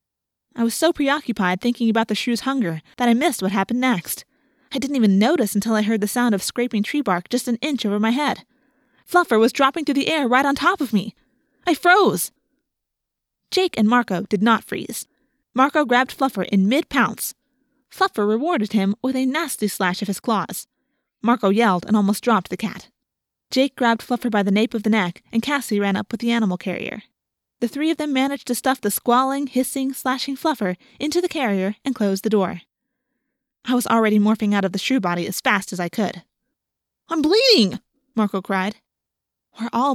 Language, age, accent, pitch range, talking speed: English, 20-39, American, 200-265 Hz, 195 wpm